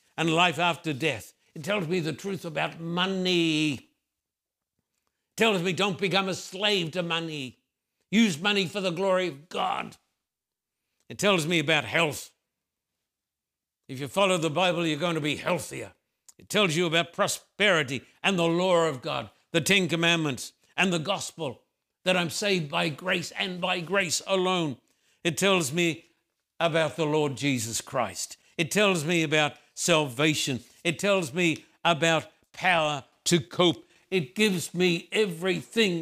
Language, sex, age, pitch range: English, male, 60-79, 160-195 Hz